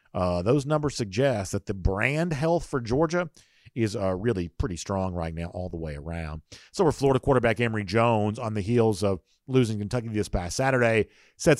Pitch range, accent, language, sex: 100-130 Hz, American, English, male